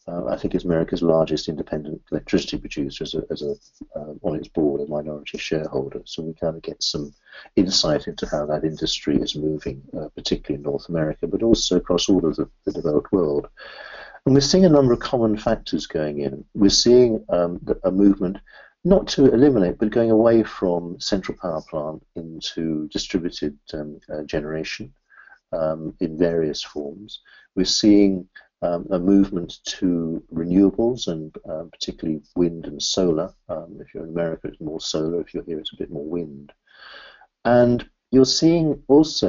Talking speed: 175 wpm